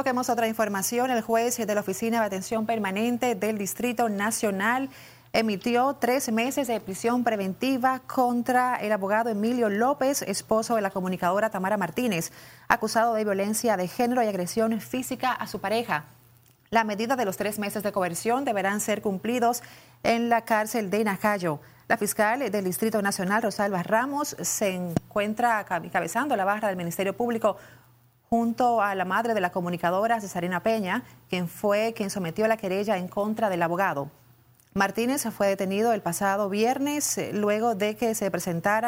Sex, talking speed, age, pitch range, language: female, 160 wpm, 30-49, 190-230 Hz, Spanish